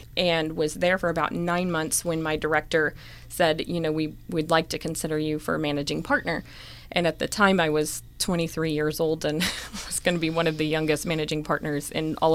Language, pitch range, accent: English, 155-170 Hz, American